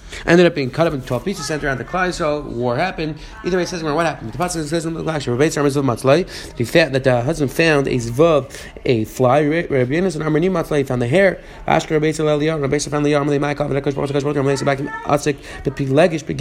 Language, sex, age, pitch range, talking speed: English, male, 30-49, 135-165 Hz, 110 wpm